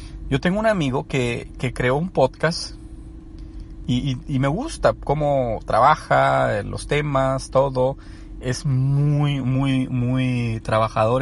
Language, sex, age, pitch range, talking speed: Spanish, male, 40-59, 110-140 Hz, 130 wpm